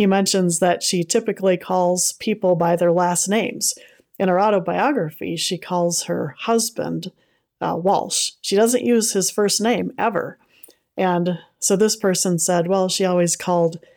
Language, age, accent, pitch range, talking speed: English, 40-59, American, 170-200 Hz, 155 wpm